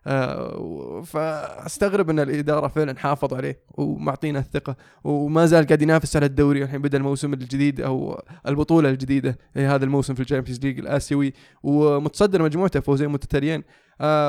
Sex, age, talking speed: male, 20-39, 140 wpm